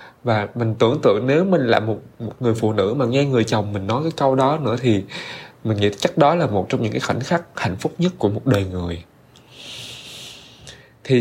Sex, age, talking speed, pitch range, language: male, 20-39, 225 wpm, 105-135 Hz, Vietnamese